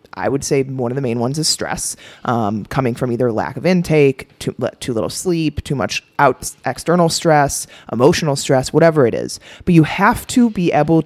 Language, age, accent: English, 30-49, American